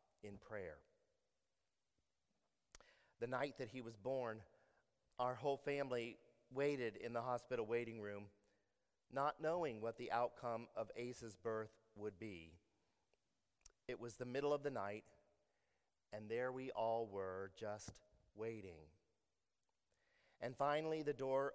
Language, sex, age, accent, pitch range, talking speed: English, male, 50-69, American, 110-135 Hz, 125 wpm